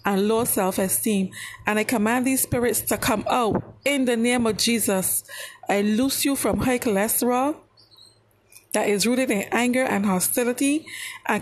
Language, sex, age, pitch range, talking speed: English, female, 40-59, 200-255 Hz, 165 wpm